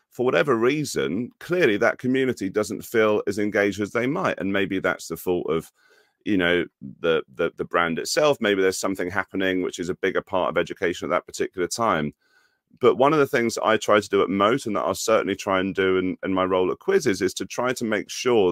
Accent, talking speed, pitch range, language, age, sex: British, 230 wpm, 95-120 Hz, English, 30-49, male